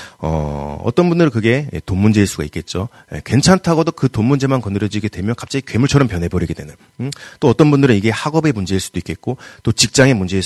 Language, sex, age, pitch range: Korean, male, 30-49, 90-130 Hz